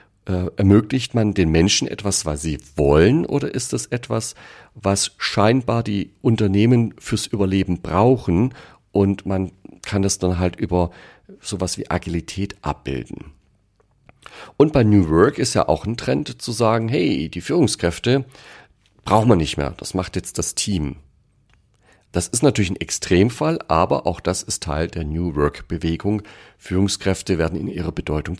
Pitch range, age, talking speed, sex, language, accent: 85-110 Hz, 40-59, 150 wpm, male, German, German